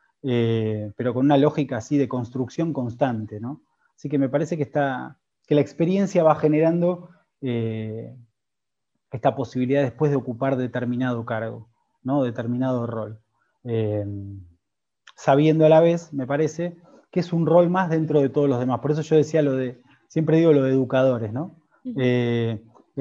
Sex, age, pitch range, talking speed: male, 20-39, 130-160 Hz, 150 wpm